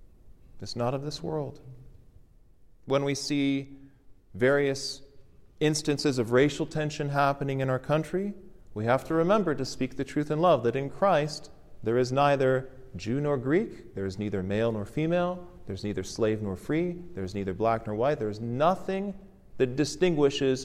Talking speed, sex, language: 165 wpm, male, English